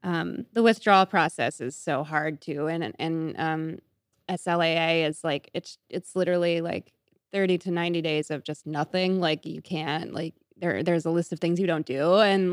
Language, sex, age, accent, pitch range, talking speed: English, female, 20-39, American, 170-200 Hz, 185 wpm